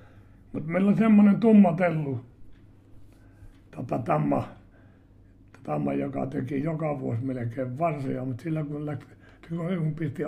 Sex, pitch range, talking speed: male, 110-140 Hz, 110 wpm